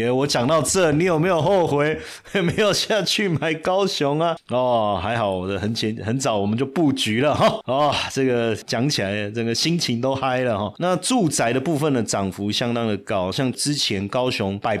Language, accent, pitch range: Chinese, native, 105-135 Hz